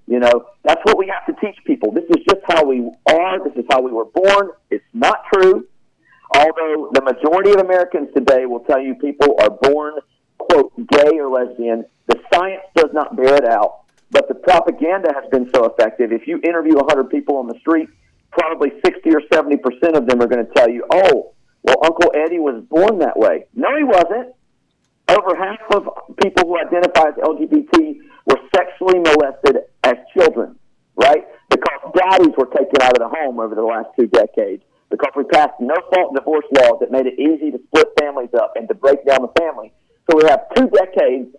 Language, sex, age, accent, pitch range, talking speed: English, male, 50-69, American, 135-200 Hz, 200 wpm